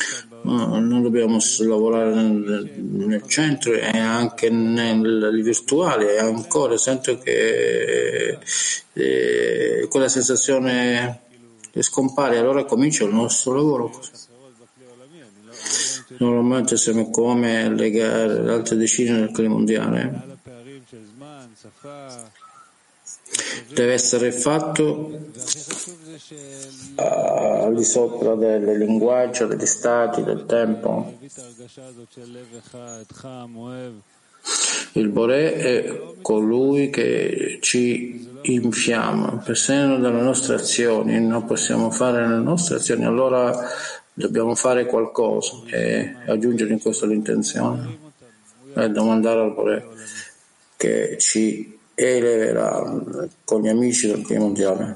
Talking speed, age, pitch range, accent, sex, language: 95 wpm, 50-69, 110-135 Hz, native, male, Italian